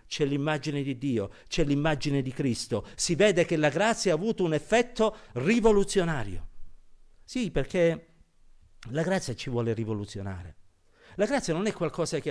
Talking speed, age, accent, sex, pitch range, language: 150 wpm, 50-69, native, male, 105-160 Hz, Italian